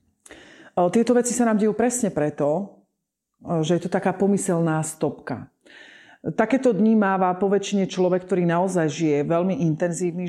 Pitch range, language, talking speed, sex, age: 160-195 Hz, Slovak, 135 wpm, female, 40-59